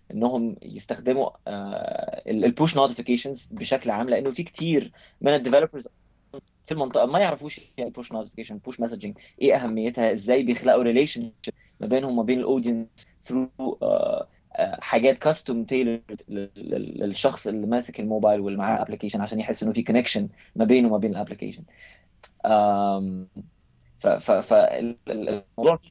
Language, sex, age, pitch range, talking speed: Arabic, male, 20-39, 105-130 Hz, 125 wpm